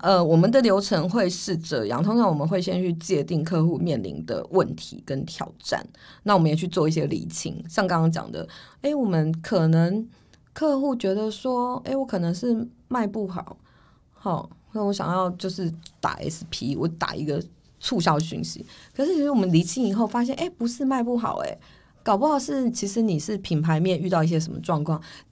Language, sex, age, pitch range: Chinese, female, 20-39, 165-230 Hz